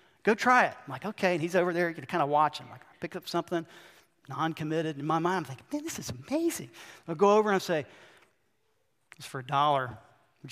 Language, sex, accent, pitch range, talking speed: English, male, American, 165-230 Hz, 240 wpm